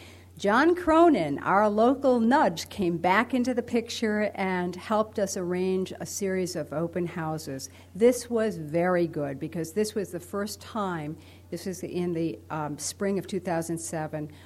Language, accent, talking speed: English, American, 155 wpm